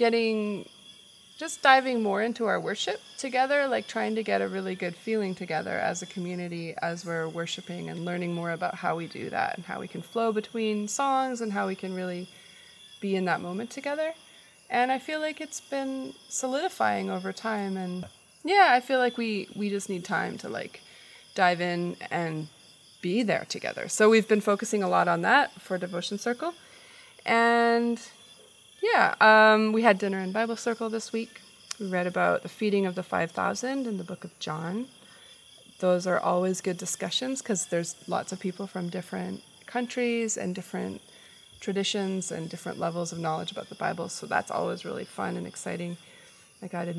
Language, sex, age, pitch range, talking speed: English, female, 20-39, 180-235 Hz, 185 wpm